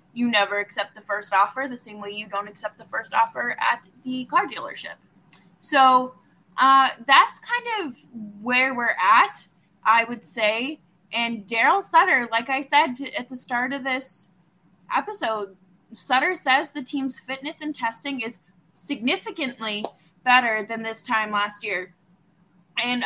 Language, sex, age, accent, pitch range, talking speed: English, female, 20-39, American, 205-280 Hz, 150 wpm